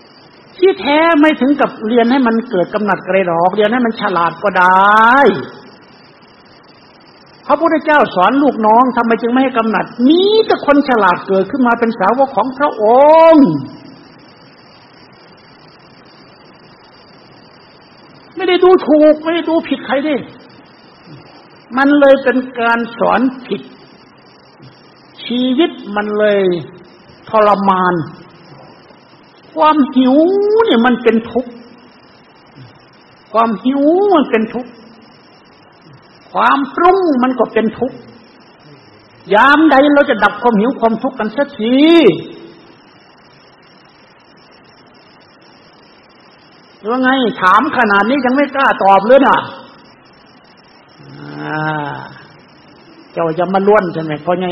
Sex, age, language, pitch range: male, 60-79, Thai, 195-275 Hz